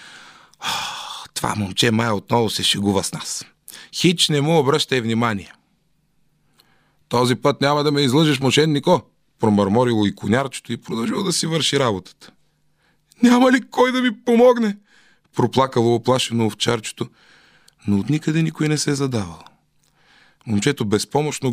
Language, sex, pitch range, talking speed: Bulgarian, male, 105-165 Hz, 135 wpm